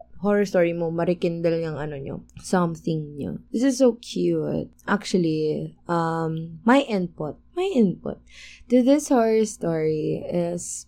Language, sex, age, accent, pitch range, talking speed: Filipino, female, 20-39, native, 170-235 Hz, 125 wpm